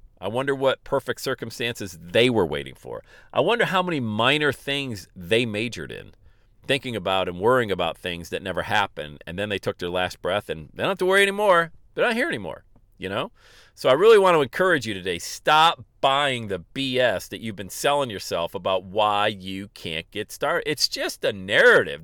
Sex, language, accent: male, English, American